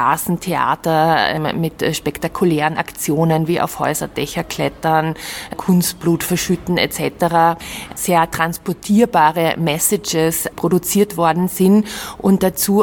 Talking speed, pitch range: 90 wpm, 175-200 Hz